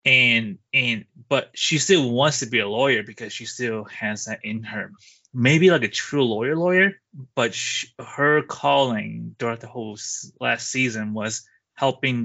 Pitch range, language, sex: 110-135 Hz, English, male